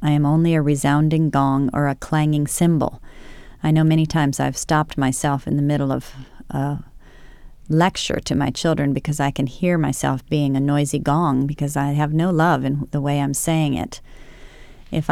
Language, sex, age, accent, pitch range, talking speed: English, female, 30-49, American, 145-165 Hz, 185 wpm